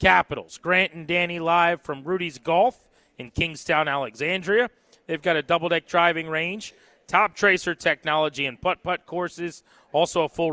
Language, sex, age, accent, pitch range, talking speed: English, male, 30-49, American, 150-190 Hz, 155 wpm